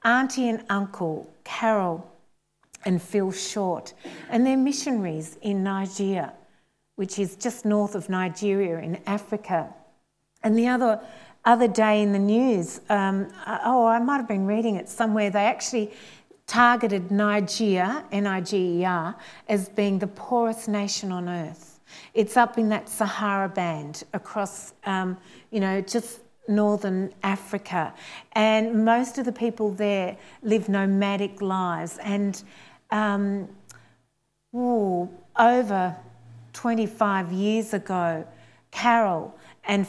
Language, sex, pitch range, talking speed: English, female, 190-225 Hz, 120 wpm